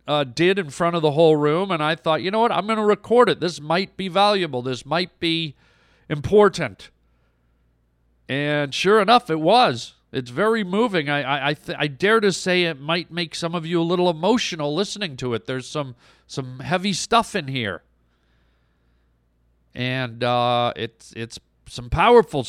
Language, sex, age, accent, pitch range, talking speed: English, male, 50-69, American, 125-185 Hz, 180 wpm